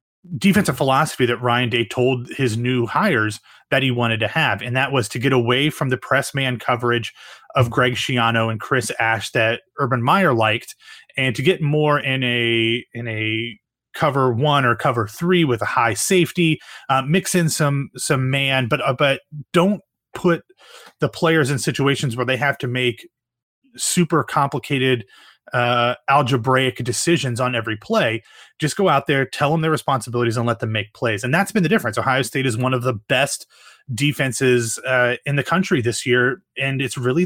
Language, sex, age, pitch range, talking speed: English, male, 30-49, 120-150 Hz, 185 wpm